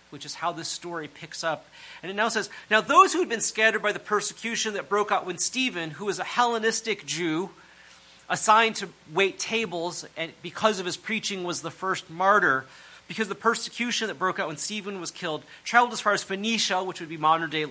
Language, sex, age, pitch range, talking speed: English, male, 30-49, 155-210 Hz, 210 wpm